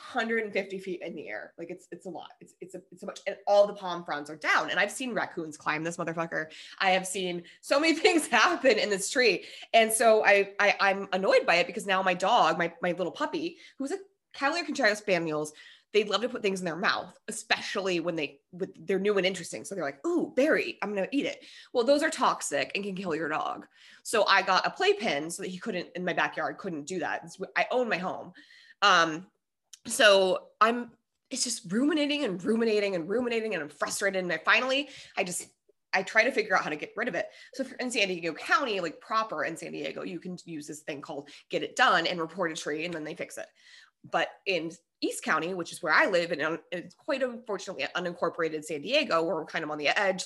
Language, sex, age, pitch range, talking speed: English, female, 20-39, 175-245 Hz, 235 wpm